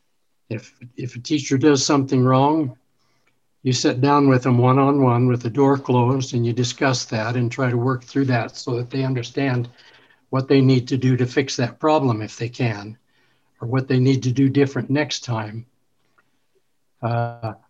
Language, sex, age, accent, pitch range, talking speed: English, male, 60-79, American, 125-145 Hz, 180 wpm